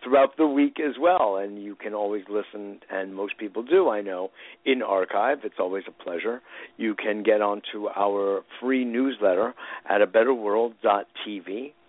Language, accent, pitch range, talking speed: English, American, 100-120 Hz, 160 wpm